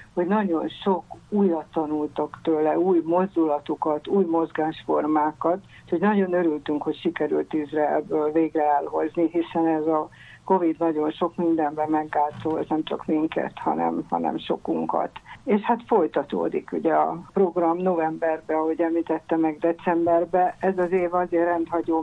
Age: 60-79